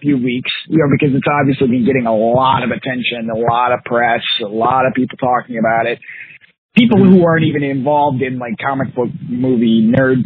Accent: American